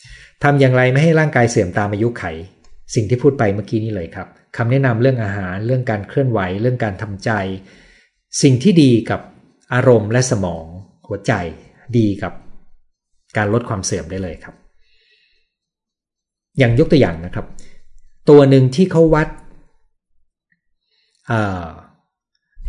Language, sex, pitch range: Thai, male, 95-130 Hz